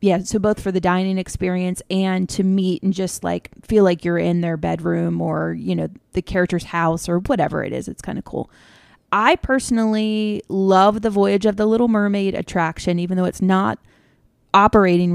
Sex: female